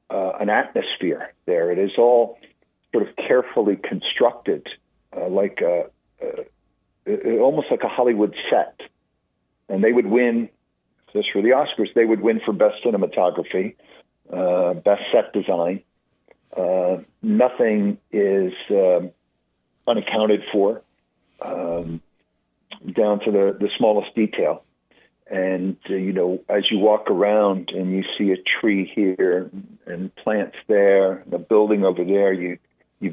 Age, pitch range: 50-69, 90-110 Hz